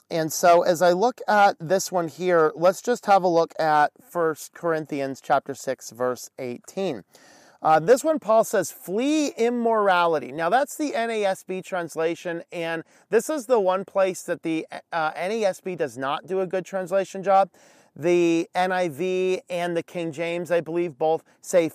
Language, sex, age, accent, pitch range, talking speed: English, male, 40-59, American, 155-190 Hz, 165 wpm